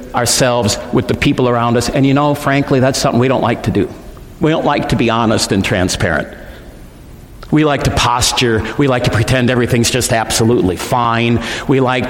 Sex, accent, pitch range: male, American, 120-185 Hz